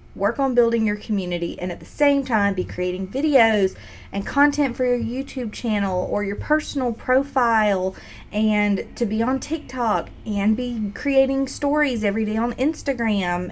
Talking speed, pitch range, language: 160 wpm, 190-255 Hz, English